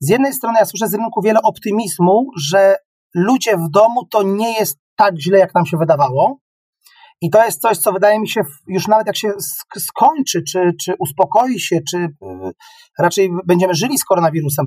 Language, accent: Polish, native